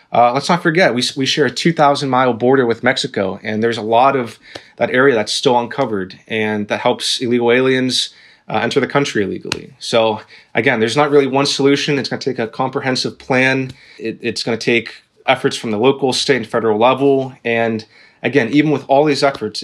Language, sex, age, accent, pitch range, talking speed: English, male, 20-39, American, 120-140 Hz, 205 wpm